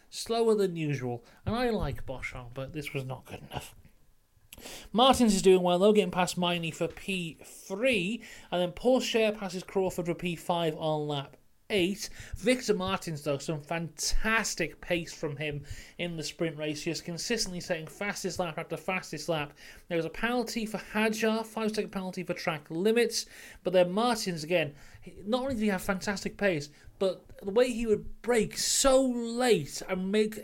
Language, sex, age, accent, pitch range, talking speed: English, male, 30-49, British, 165-215 Hz, 175 wpm